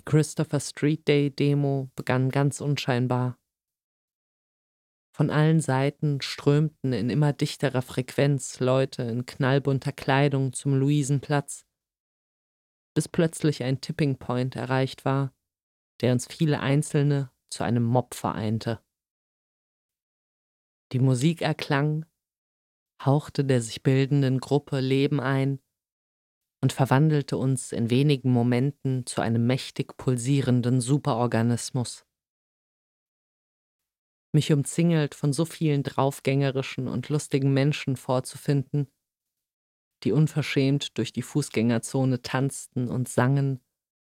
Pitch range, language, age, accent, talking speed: 125-145 Hz, German, 30-49, German, 95 wpm